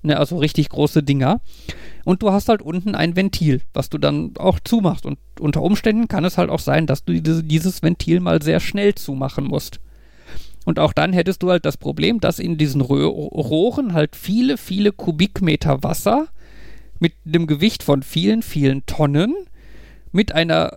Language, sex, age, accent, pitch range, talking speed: German, male, 50-69, German, 150-205 Hz, 195 wpm